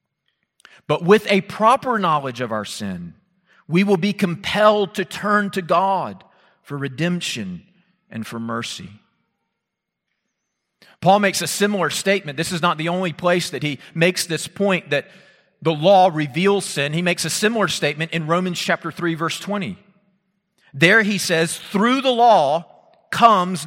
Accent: American